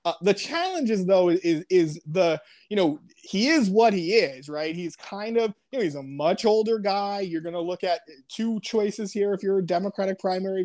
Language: English